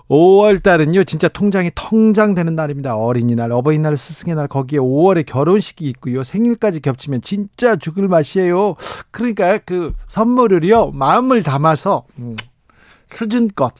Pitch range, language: 135-185 Hz, Korean